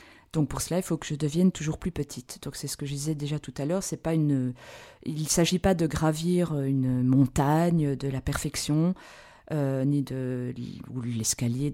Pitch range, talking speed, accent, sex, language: 140-175 Hz, 200 wpm, French, female, French